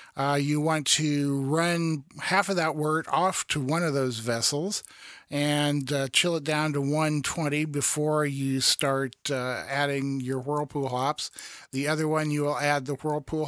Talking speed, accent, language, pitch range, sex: 170 wpm, American, English, 140-175 Hz, male